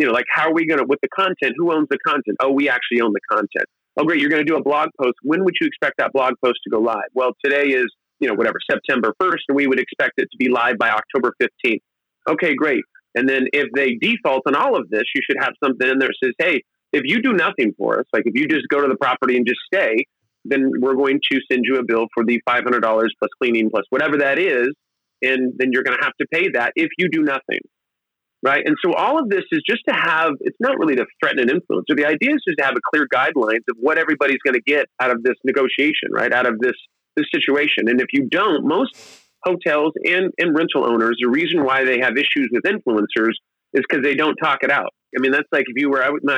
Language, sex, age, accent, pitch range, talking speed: English, male, 30-49, American, 125-165 Hz, 260 wpm